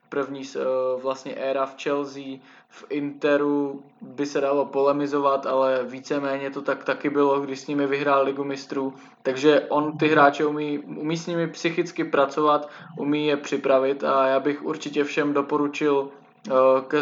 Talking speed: 150 wpm